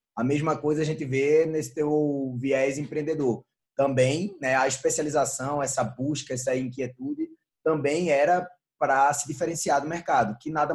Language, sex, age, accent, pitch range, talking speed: Portuguese, male, 20-39, Brazilian, 120-155 Hz, 150 wpm